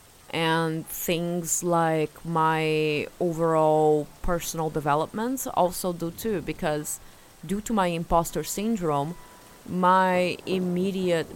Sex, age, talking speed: female, 20-39, 95 wpm